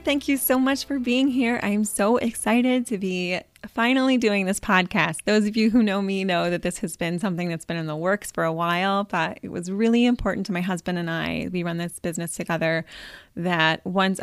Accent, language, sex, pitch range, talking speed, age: American, English, female, 185-245 Hz, 230 wpm, 20-39